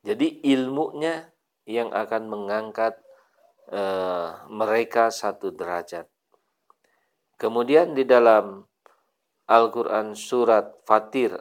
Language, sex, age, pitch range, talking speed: Indonesian, male, 50-69, 110-145 Hz, 80 wpm